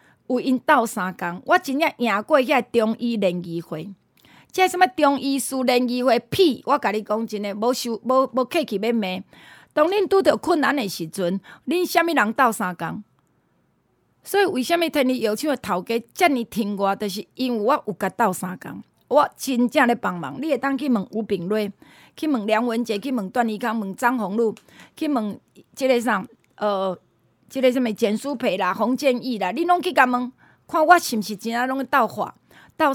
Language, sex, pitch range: Chinese, female, 215-290 Hz